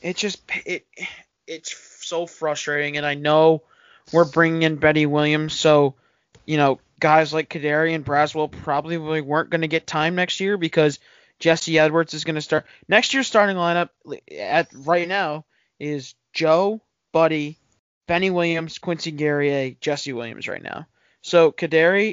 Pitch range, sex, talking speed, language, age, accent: 145-165 Hz, male, 165 wpm, English, 20-39, American